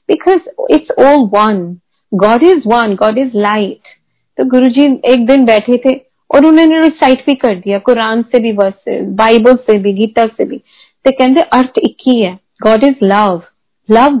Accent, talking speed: native, 175 wpm